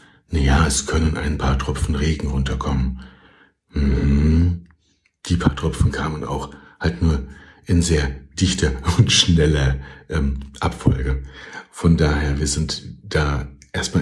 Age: 60-79